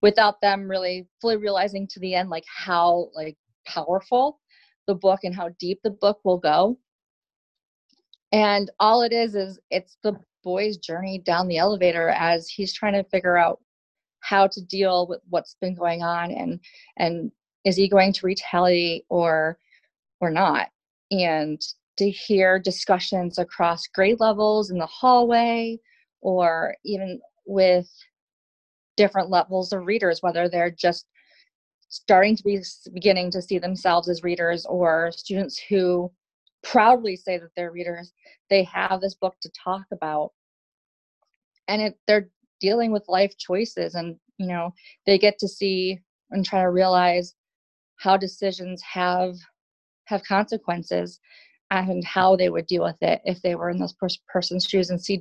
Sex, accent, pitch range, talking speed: female, American, 175-200 Hz, 150 wpm